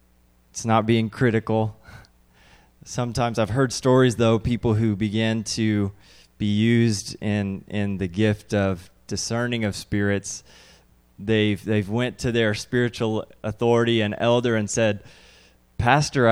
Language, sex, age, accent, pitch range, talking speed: English, male, 20-39, American, 95-120 Hz, 130 wpm